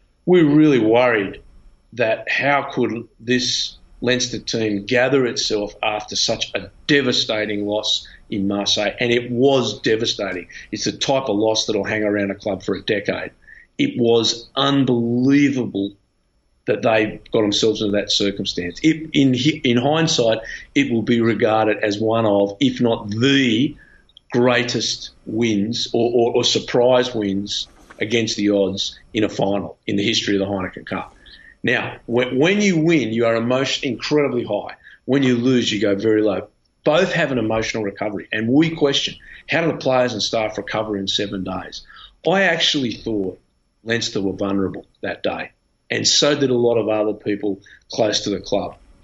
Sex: male